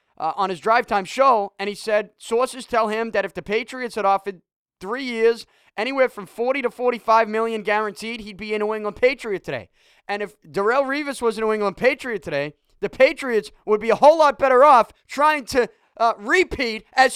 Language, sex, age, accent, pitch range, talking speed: English, male, 20-39, American, 160-250 Hz, 205 wpm